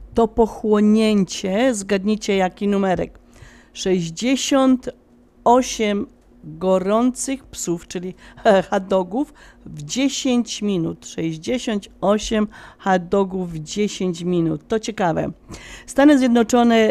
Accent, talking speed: native, 80 wpm